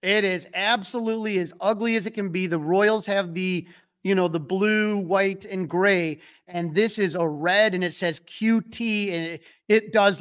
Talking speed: 195 wpm